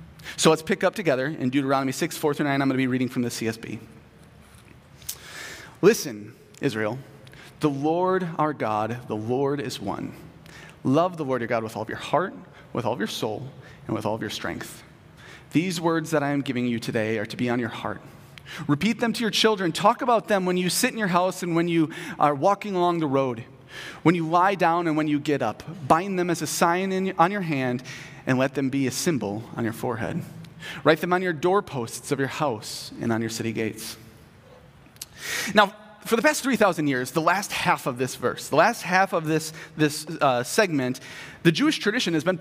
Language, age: English, 30-49